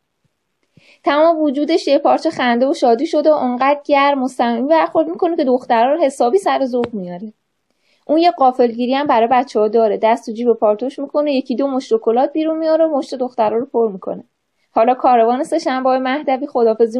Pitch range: 240-300 Hz